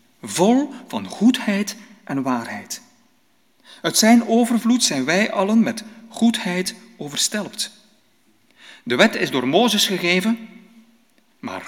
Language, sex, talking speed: Dutch, male, 110 wpm